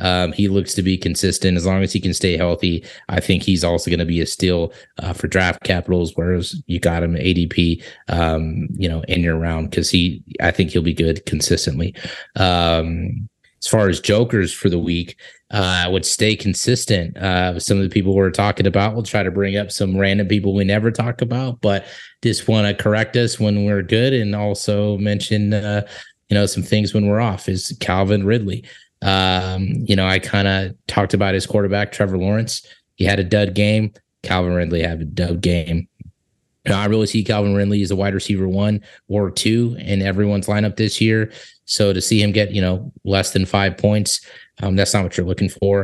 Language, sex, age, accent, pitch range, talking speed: English, male, 30-49, American, 90-105 Hz, 210 wpm